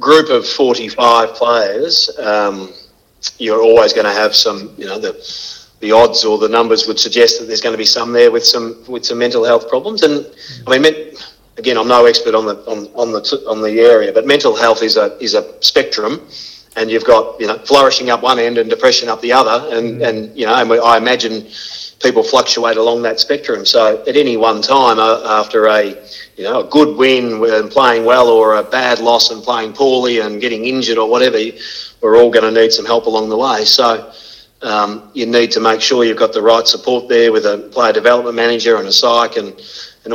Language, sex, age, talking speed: English, male, 40-59, 215 wpm